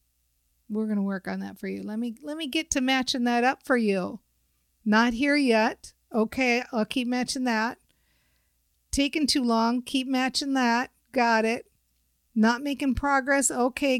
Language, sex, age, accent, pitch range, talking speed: English, female, 50-69, American, 195-260 Hz, 165 wpm